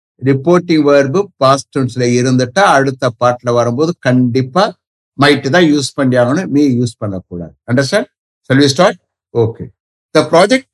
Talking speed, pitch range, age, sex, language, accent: 140 wpm, 130-175 Hz, 60-79, male, English, Indian